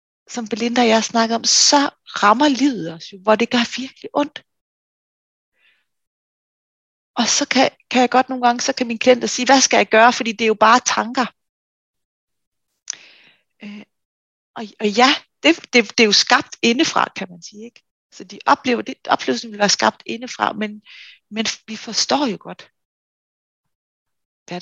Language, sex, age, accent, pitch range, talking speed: Danish, female, 30-49, native, 200-245 Hz, 170 wpm